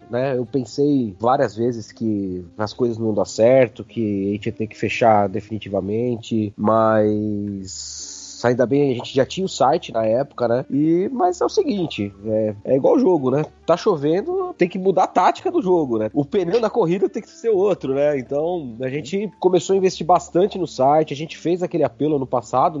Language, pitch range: Portuguese, 125-175 Hz